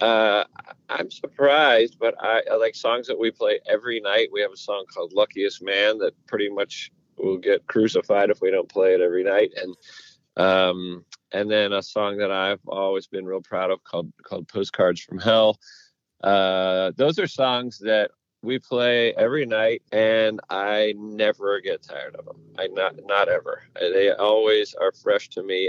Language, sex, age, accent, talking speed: English, male, 40-59, American, 180 wpm